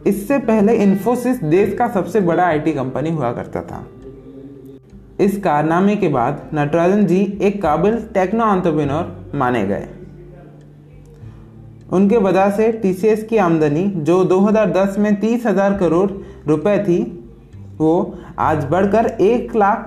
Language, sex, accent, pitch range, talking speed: Hindi, male, native, 145-205 Hz, 125 wpm